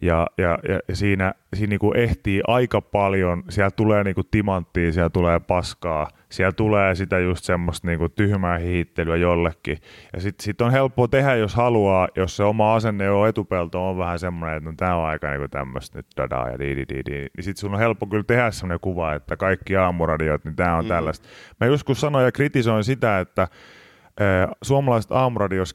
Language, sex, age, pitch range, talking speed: Finnish, male, 30-49, 85-110 Hz, 180 wpm